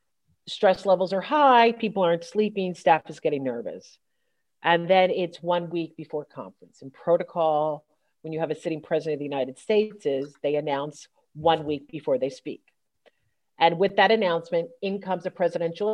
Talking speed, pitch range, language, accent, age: 175 wpm, 165-210 Hz, English, American, 40-59